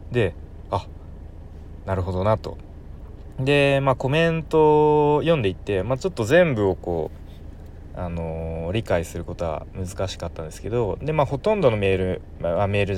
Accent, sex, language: native, male, Japanese